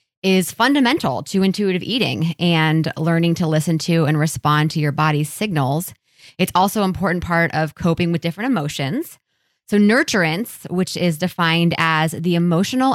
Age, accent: 20-39, American